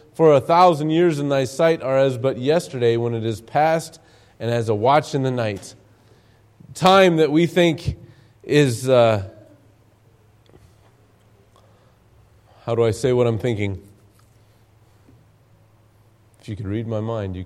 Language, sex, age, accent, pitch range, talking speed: English, male, 40-59, American, 105-130 Hz, 145 wpm